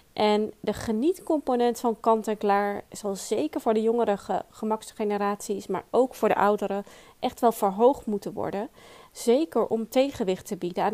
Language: Dutch